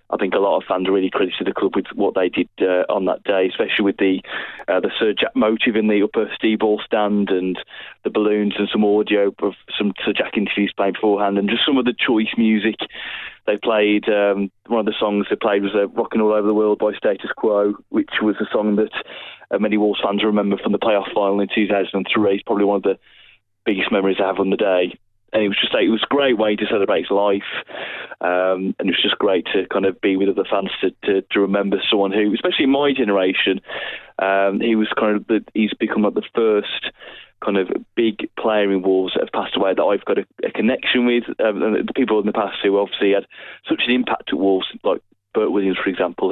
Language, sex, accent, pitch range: English, male, British, 100-110 Hz